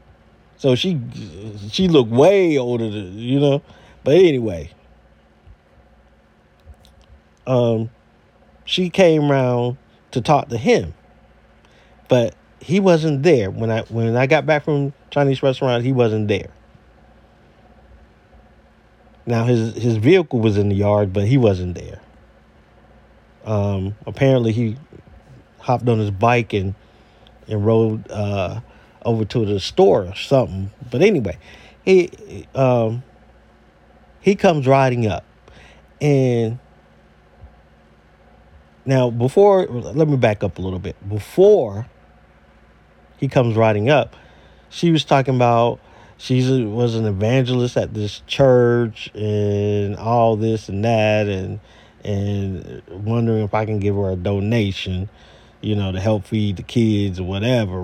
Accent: American